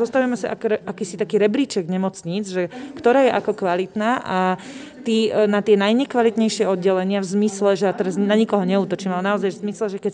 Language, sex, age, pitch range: Slovak, female, 30-49, 190-220 Hz